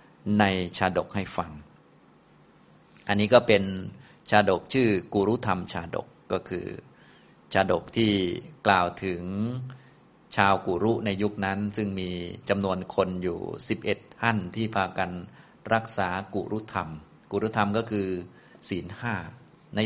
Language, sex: Thai, male